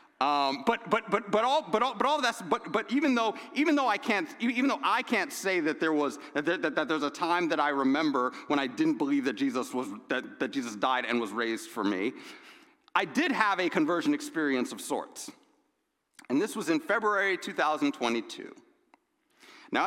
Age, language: 40-59, English